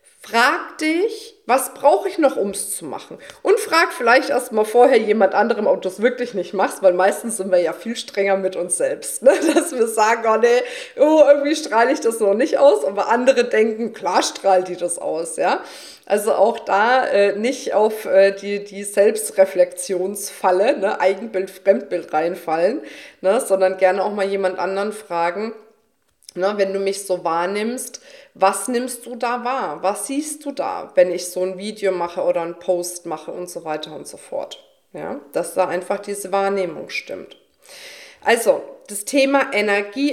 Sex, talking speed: female, 180 wpm